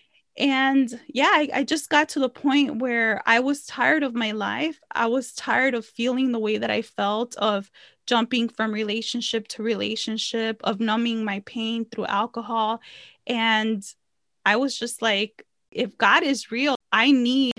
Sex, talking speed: female, 165 wpm